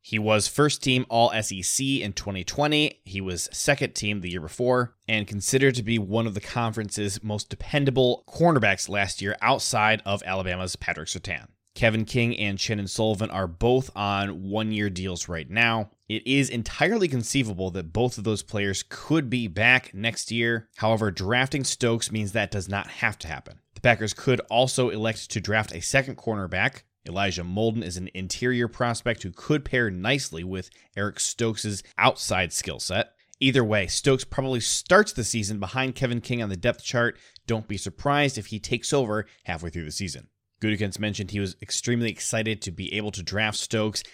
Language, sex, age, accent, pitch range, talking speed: English, male, 20-39, American, 100-125 Hz, 175 wpm